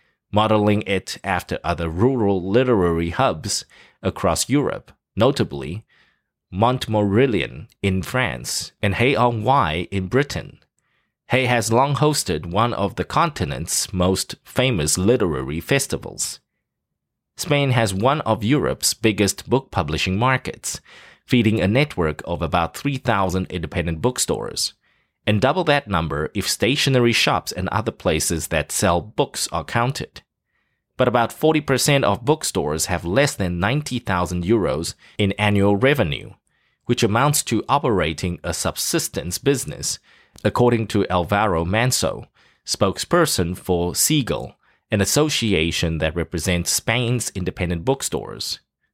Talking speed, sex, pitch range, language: 115 wpm, male, 90-125 Hz, English